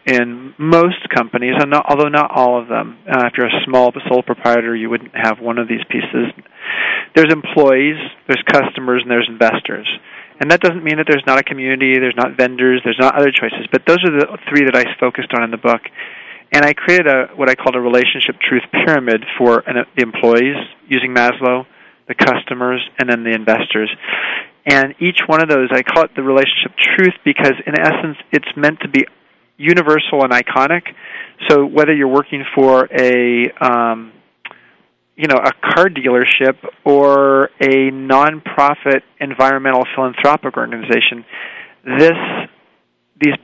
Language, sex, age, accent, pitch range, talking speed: English, male, 40-59, American, 120-145 Hz, 170 wpm